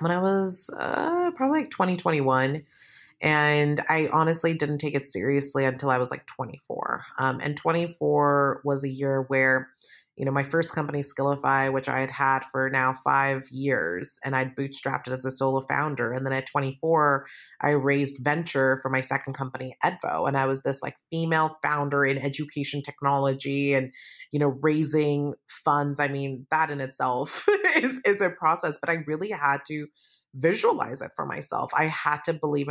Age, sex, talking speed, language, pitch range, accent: 30-49, female, 180 wpm, English, 135-155 Hz, American